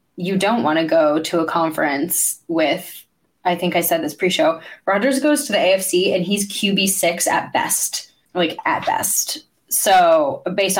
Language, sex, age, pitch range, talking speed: English, female, 20-39, 175-230 Hz, 170 wpm